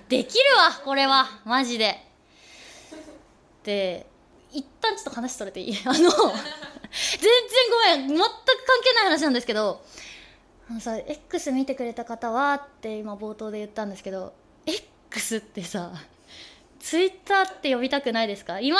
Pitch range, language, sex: 255-410 Hz, Japanese, female